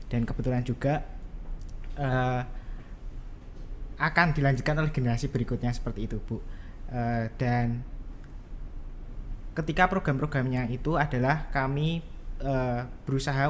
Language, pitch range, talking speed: Indonesian, 120-145 Hz, 95 wpm